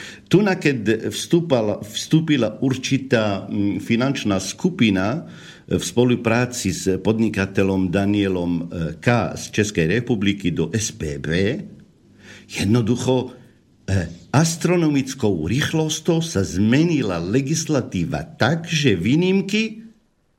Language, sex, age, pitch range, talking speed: Slovak, male, 50-69, 95-135 Hz, 75 wpm